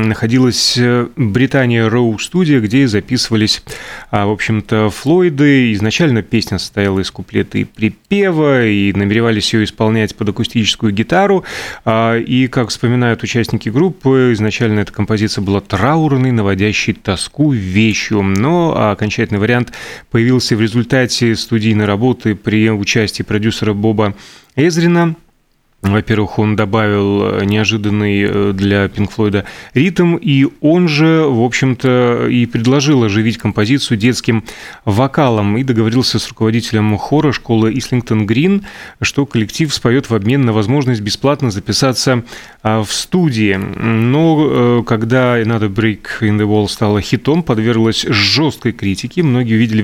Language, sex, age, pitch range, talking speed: Russian, male, 30-49, 105-130 Hz, 120 wpm